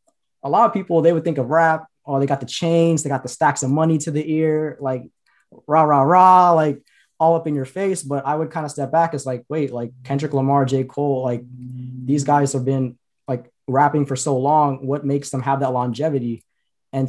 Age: 20-39